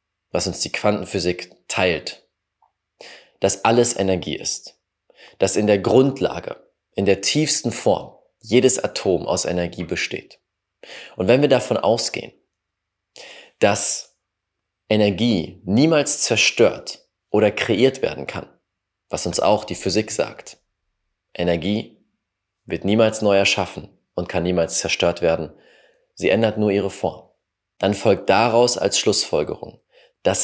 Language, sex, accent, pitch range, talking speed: German, male, German, 95-125 Hz, 120 wpm